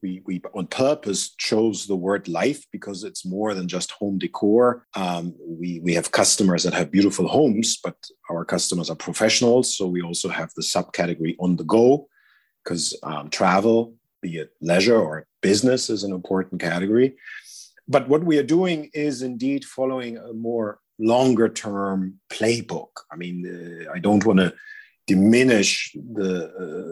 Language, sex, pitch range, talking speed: English, male, 95-125 Hz, 165 wpm